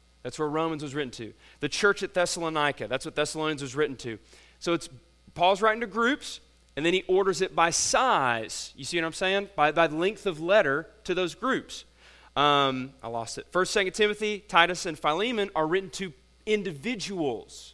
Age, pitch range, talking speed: 30-49, 135-170 Hz, 190 wpm